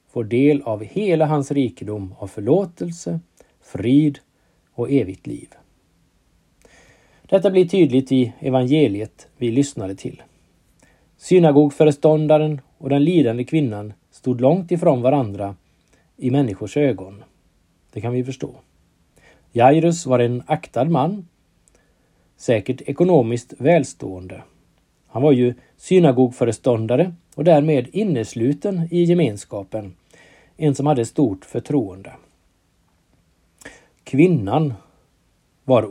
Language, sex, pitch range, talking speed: Swedish, male, 115-155 Hz, 100 wpm